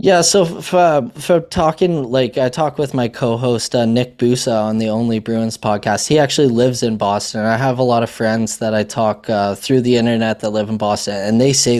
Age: 20-39